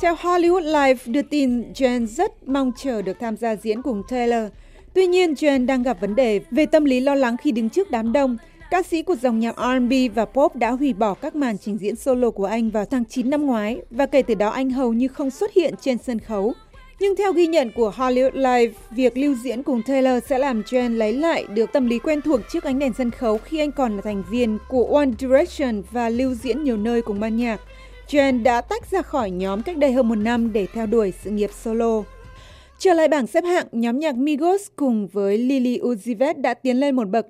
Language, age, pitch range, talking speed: Vietnamese, 20-39, 225-285 Hz, 235 wpm